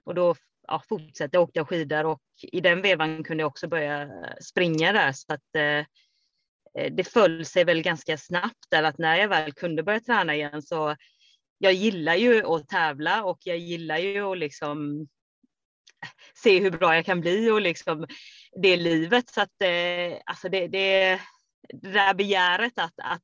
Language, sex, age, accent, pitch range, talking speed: Swedish, female, 30-49, native, 150-185 Hz, 175 wpm